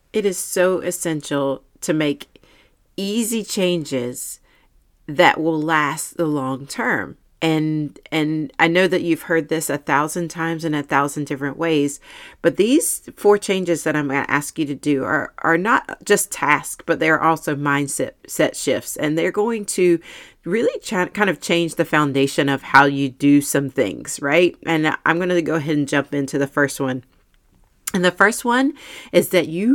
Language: English